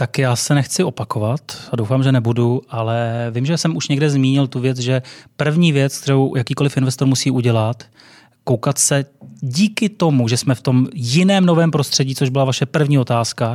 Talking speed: 185 wpm